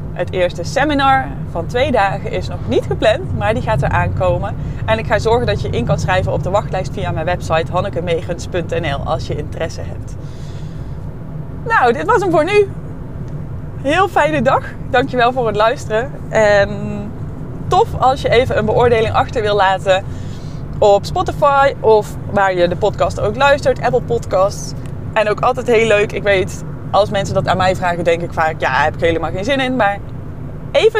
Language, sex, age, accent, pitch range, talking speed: Dutch, female, 20-39, Dutch, 145-225 Hz, 185 wpm